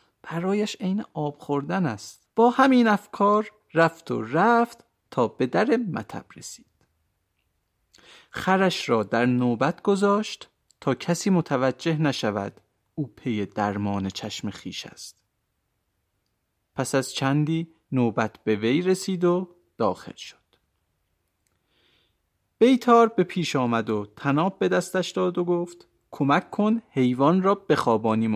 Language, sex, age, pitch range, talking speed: Persian, male, 40-59, 120-180 Hz, 120 wpm